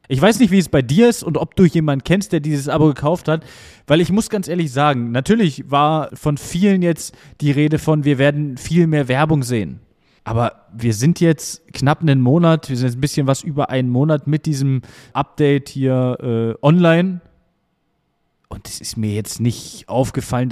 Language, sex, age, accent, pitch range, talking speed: German, male, 20-39, German, 115-155 Hz, 195 wpm